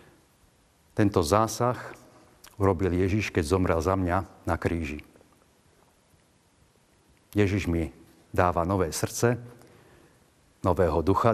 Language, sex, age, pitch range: Slovak, male, 50-69, 85-105 Hz